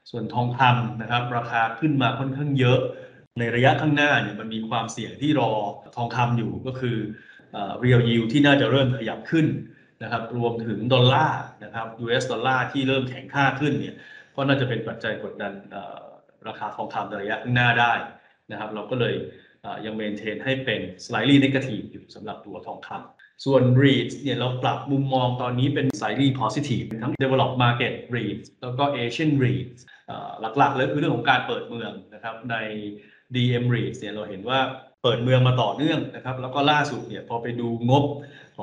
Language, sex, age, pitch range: Thai, male, 20-39, 115-135 Hz